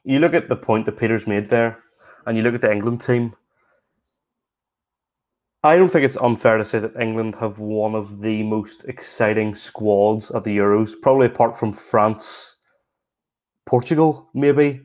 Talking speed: 165 wpm